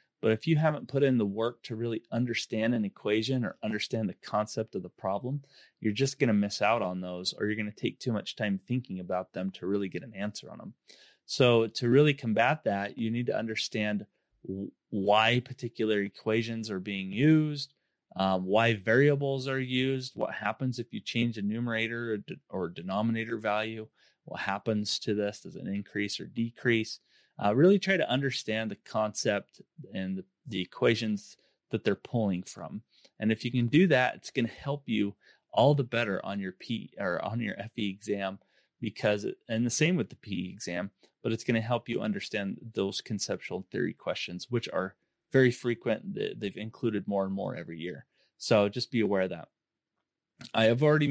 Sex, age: male, 30-49